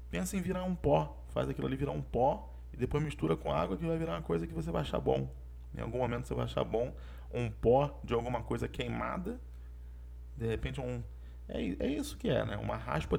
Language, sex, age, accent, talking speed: Portuguese, male, 20-39, Brazilian, 225 wpm